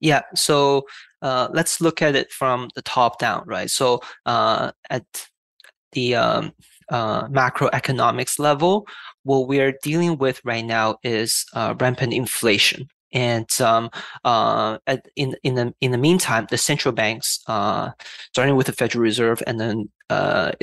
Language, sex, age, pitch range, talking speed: English, male, 20-39, 120-150 Hz, 155 wpm